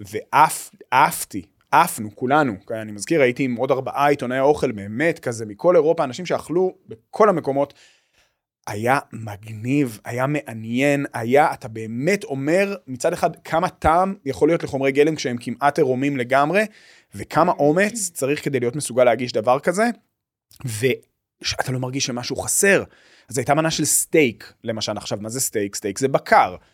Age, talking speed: 30-49, 155 wpm